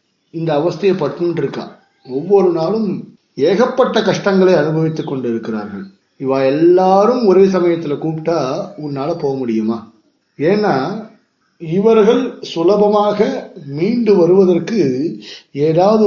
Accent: native